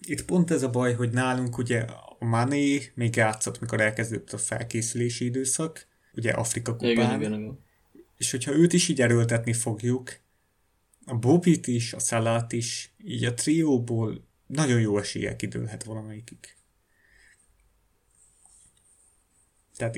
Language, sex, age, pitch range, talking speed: Hungarian, male, 30-49, 110-125 Hz, 125 wpm